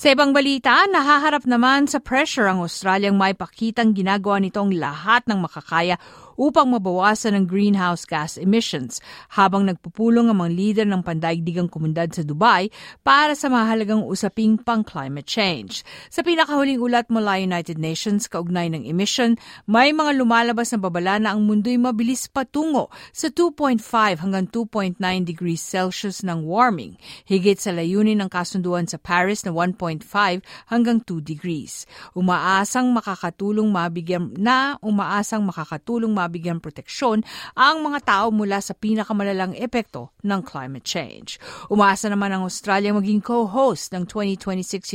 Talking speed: 140 wpm